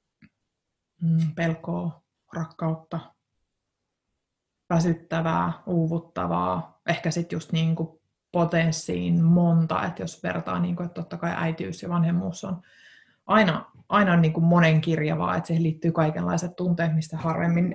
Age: 20-39